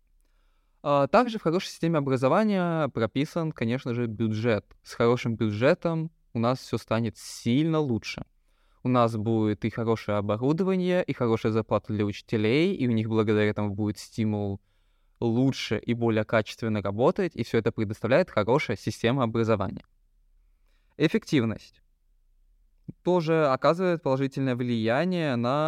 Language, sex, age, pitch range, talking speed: Russian, male, 20-39, 110-135 Hz, 125 wpm